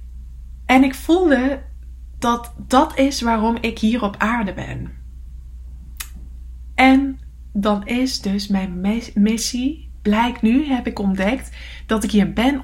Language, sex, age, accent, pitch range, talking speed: English, female, 20-39, Dutch, 210-265 Hz, 130 wpm